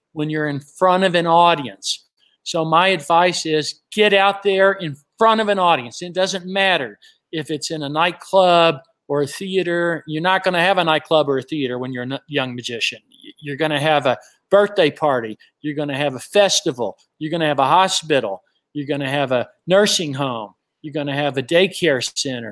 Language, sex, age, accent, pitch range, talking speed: English, male, 50-69, American, 150-195 Hz, 190 wpm